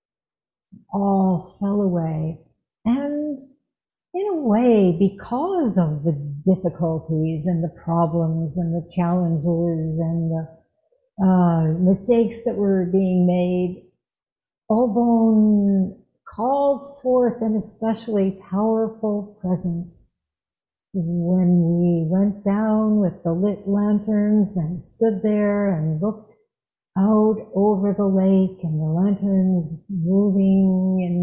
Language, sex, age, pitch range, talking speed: English, female, 60-79, 175-215 Hz, 105 wpm